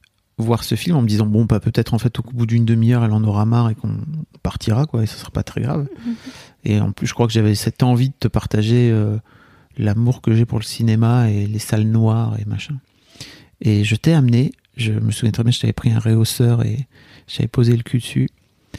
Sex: male